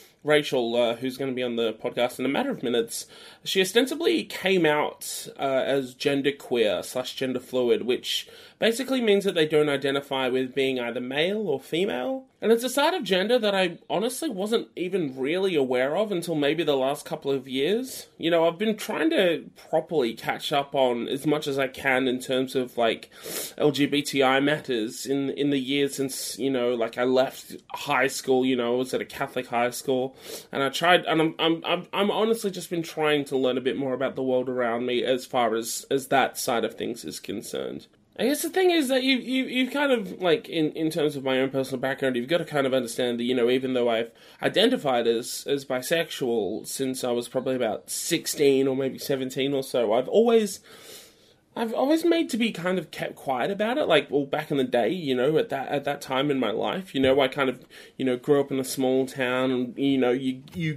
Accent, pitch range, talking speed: Australian, 130-175 Hz, 220 wpm